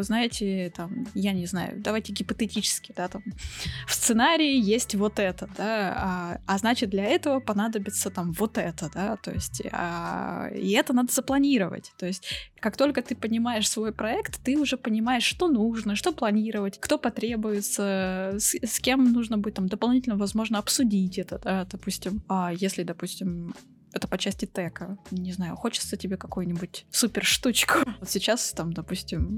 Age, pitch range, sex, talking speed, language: 20-39, 190-235 Hz, female, 155 wpm, Russian